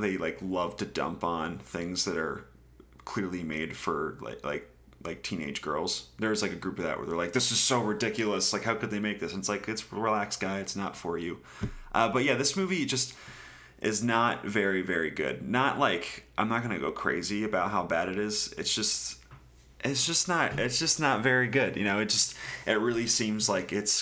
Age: 30-49